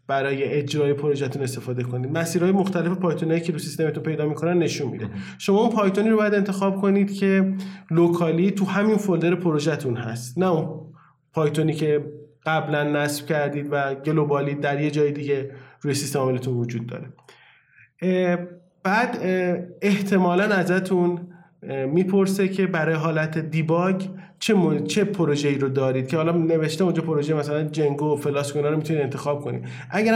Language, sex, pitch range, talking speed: Persian, male, 145-185 Hz, 145 wpm